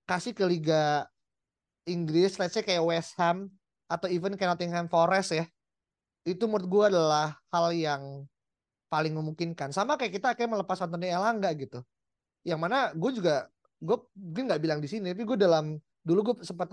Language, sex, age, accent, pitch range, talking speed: Indonesian, male, 20-39, native, 150-185 Hz, 165 wpm